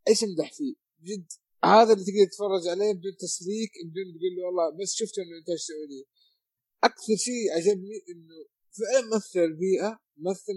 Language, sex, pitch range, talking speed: Arabic, male, 175-225 Hz, 160 wpm